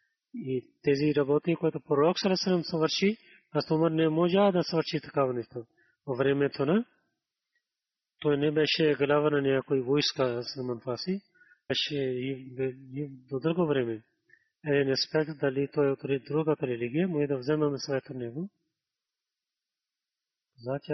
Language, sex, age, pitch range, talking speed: Bulgarian, male, 30-49, 135-160 Hz, 150 wpm